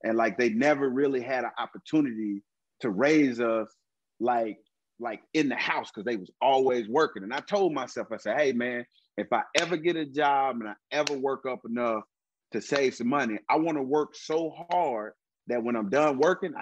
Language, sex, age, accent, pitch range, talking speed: English, male, 30-49, American, 135-210 Hz, 200 wpm